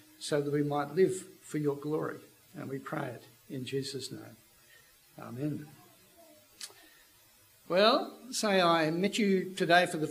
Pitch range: 155-190 Hz